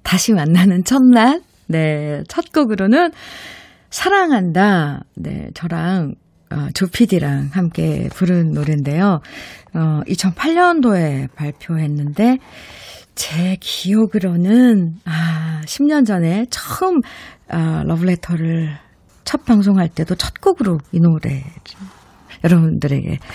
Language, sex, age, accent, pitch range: Korean, female, 50-69, native, 160-230 Hz